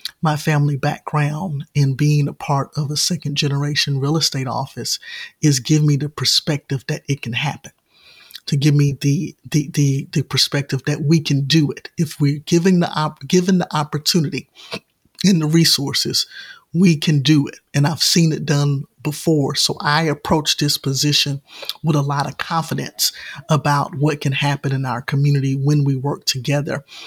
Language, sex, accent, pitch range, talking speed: English, male, American, 140-155 Hz, 175 wpm